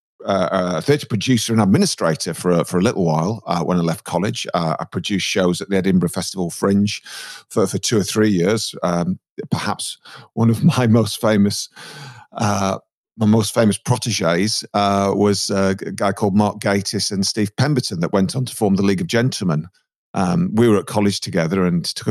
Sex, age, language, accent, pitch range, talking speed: male, 40-59, English, British, 95-115 Hz, 185 wpm